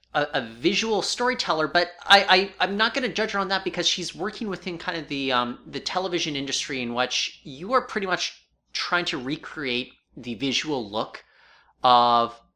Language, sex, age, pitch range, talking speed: English, male, 30-49, 125-180 Hz, 180 wpm